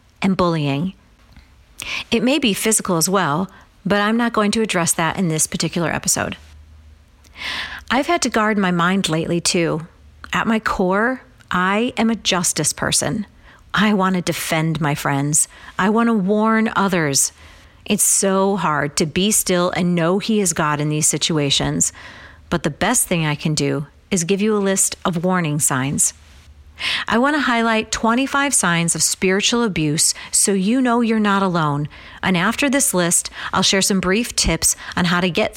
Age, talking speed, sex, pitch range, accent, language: 40-59, 175 wpm, female, 155-215 Hz, American, English